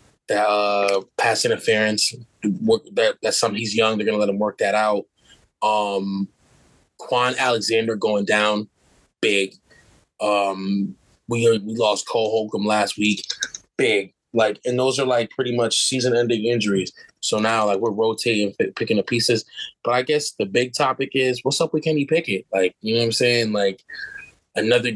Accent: American